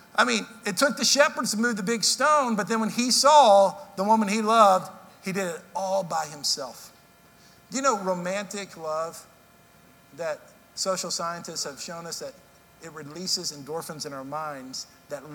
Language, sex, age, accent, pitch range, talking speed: English, male, 50-69, American, 160-205 Hz, 175 wpm